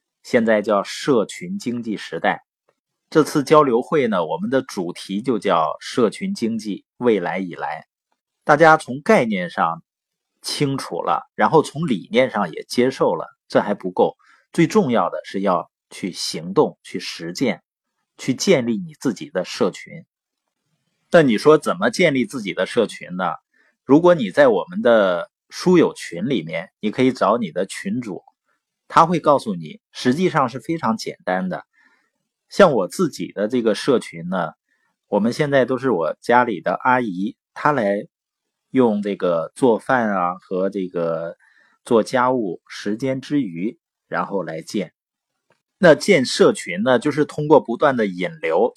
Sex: male